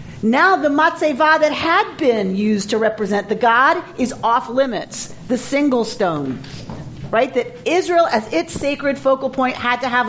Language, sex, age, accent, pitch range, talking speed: English, female, 40-59, American, 195-260 Hz, 165 wpm